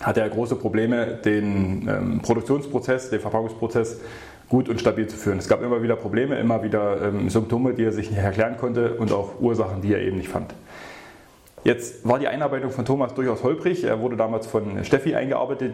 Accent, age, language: German, 30-49, German